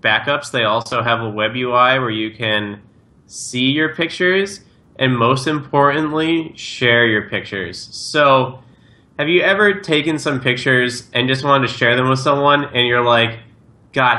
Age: 20-39